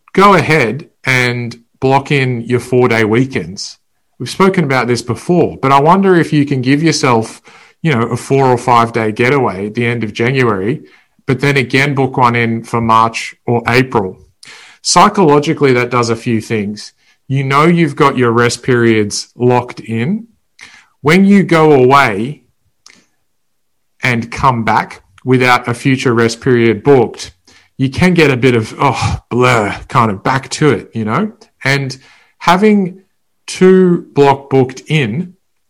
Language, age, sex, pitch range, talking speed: English, 40-59, male, 115-145 Hz, 155 wpm